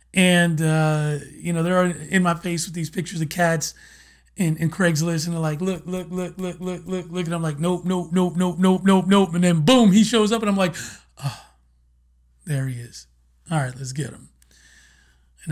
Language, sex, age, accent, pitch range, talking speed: English, male, 30-49, American, 145-185 Hz, 215 wpm